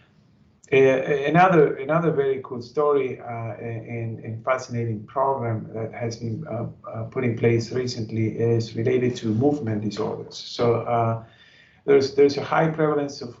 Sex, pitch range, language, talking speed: male, 115-140 Hz, English, 145 wpm